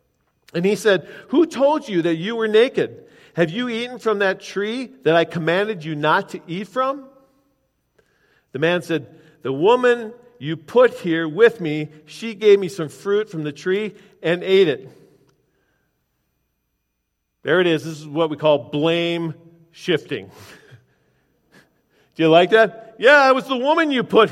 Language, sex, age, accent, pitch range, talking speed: English, male, 50-69, American, 155-230 Hz, 165 wpm